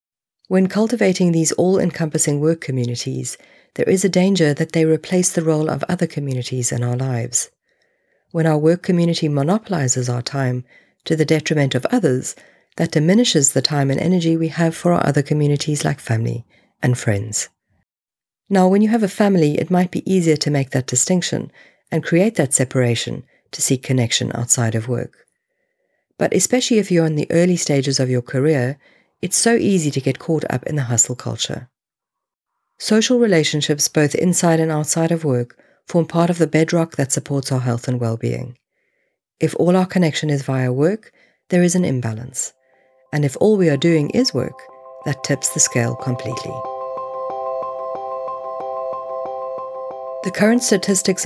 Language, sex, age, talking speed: English, female, 50-69, 165 wpm